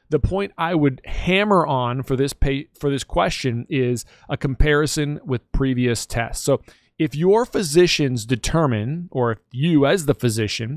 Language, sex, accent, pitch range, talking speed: English, male, American, 125-155 Hz, 160 wpm